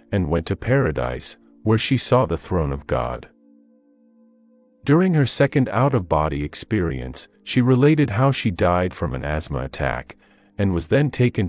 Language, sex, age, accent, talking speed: English, male, 40-59, American, 150 wpm